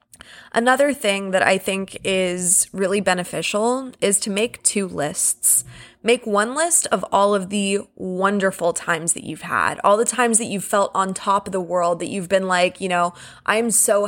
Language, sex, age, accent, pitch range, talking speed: English, female, 20-39, American, 185-225 Hz, 190 wpm